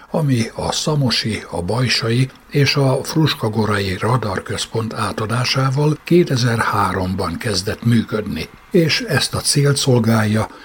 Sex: male